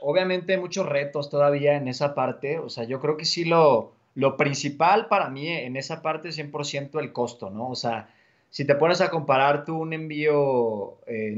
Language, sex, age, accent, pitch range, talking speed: Spanish, male, 20-39, Mexican, 120-150 Hz, 200 wpm